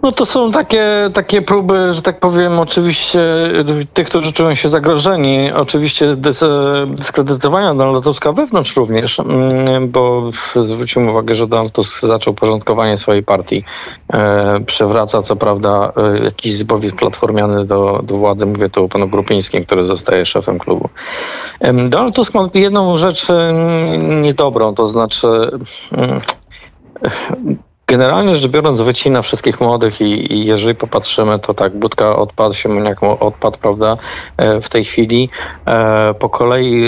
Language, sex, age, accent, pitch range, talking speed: Polish, male, 50-69, native, 110-160 Hz, 140 wpm